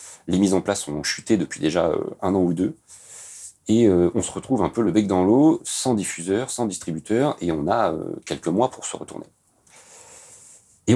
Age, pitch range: 40-59, 85-110 Hz